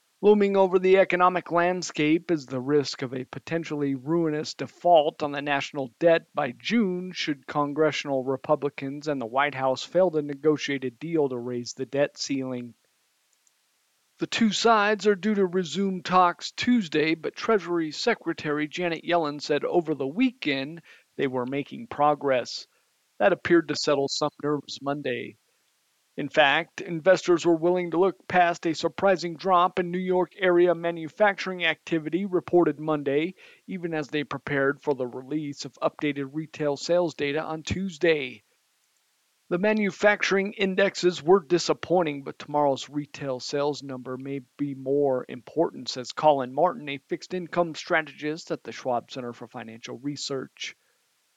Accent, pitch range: American, 140-180 Hz